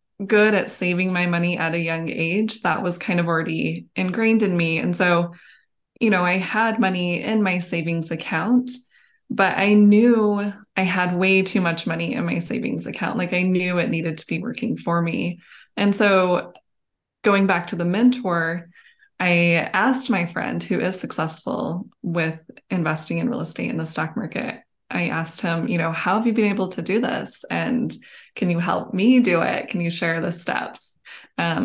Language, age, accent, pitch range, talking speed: English, 20-39, American, 170-210 Hz, 190 wpm